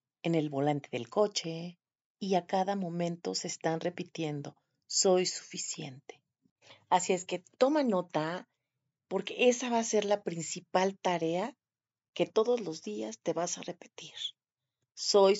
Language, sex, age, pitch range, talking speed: Spanish, female, 40-59, 155-205 Hz, 140 wpm